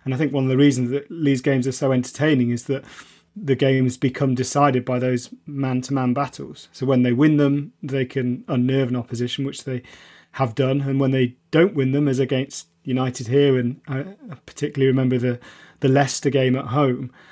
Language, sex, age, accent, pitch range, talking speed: English, male, 30-49, British, 125-145 Hz, 200 wpm